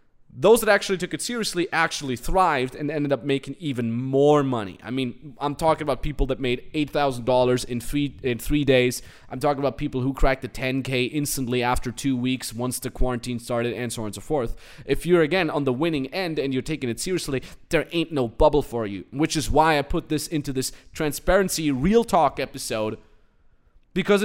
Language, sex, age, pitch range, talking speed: English, male, 20-39, 125-165 Hz, 200 wpm